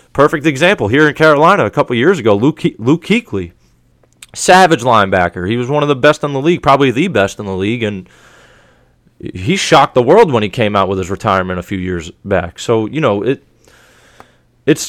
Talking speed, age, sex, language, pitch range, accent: 205 wpm, 30-49, male, English, 100-140 Hz, American